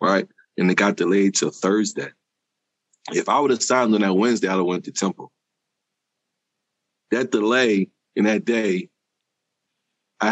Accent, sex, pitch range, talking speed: American, male, 100-155 Hz, 155 wpm